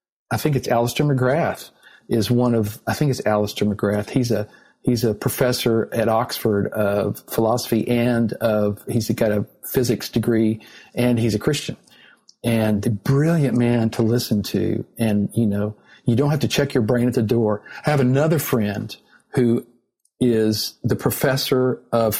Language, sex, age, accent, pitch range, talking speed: English, male, 50-69, American, 110-125 Hz, 170 wpm